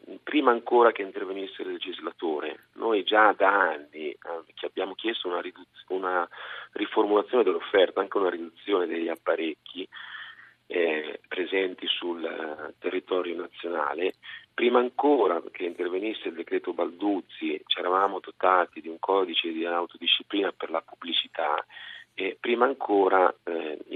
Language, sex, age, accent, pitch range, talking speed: Italian, male, 40-59, native, 330-410 Hz, 120 wpm